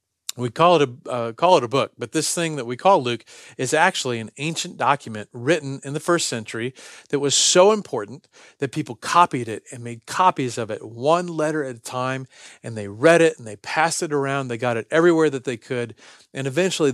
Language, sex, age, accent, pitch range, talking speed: English, male, 40-59, American, 120-170 Hz, 220 wpm